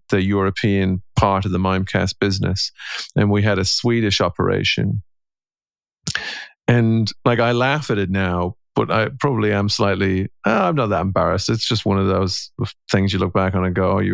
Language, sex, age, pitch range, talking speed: English, male, 40-59, 95-120 Hz, 185 wpm